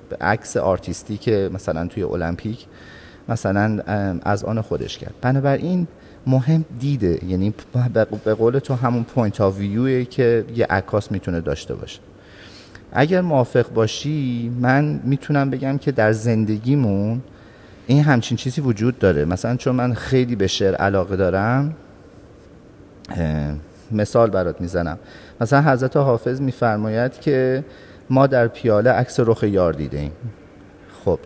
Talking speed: 130 wpm